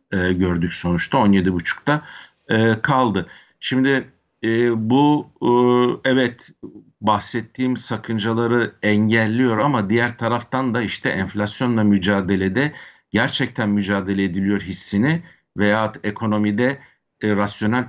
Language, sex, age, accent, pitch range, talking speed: Turkish, male, 60-79, native, 100-120 Hz, 85 wpm